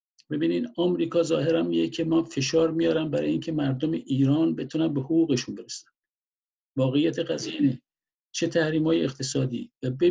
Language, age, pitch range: Persian, 50-69, 130-160 Hz